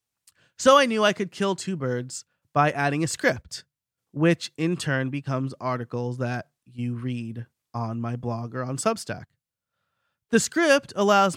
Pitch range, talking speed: 125-190 Hz, 155 wpm